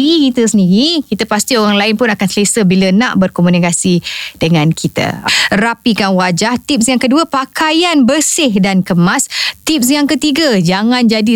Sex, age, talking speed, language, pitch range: female, 20-39, 150 wpm, Indonesian, 190-250 Hz